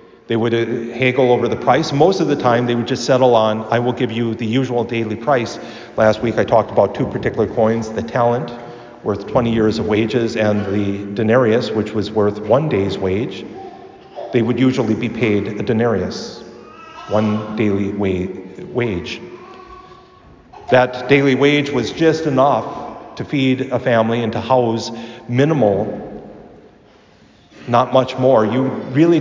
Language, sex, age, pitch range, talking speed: English, male, 40-59, 110-145 Hz, 160 wpm